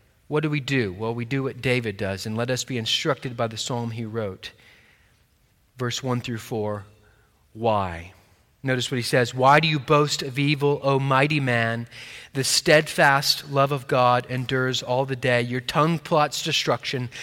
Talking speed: 180 wpm